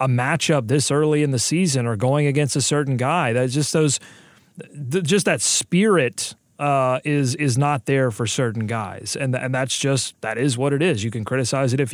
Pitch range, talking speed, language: 130-175 Hz, 205 wpm, English